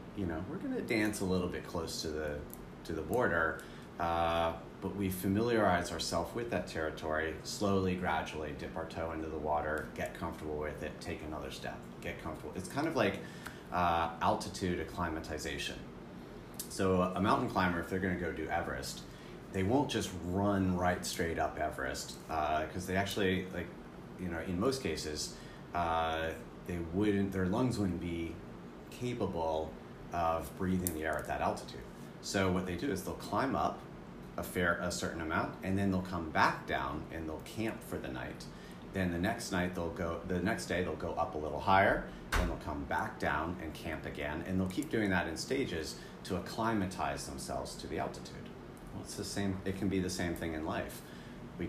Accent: American